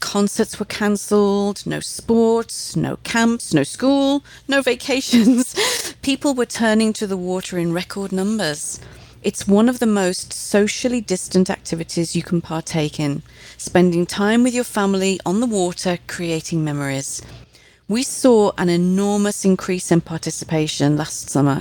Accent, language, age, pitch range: British, English, 40-59, 170-215 Hz